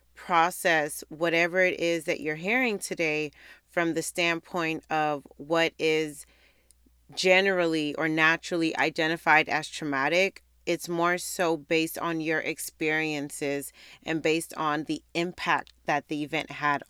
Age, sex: 30-49, female